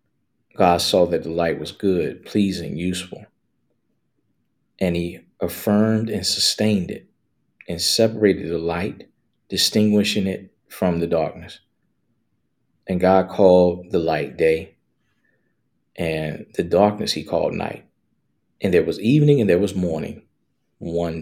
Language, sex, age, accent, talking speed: English, male, 40-59, American, 125 wpm